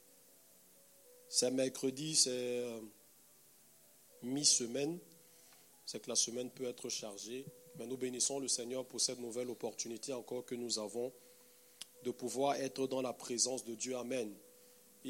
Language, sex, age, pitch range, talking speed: French, male, 40-59, 120-140 Hz, 135 wpm